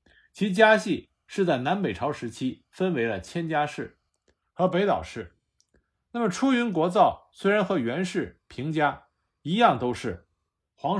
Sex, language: male, Chinese